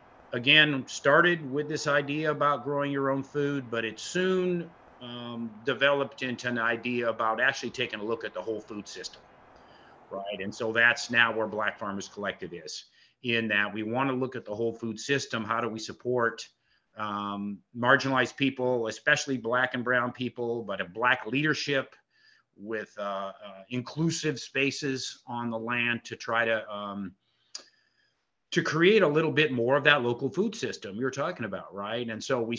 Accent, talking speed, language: American, 170 wpm, English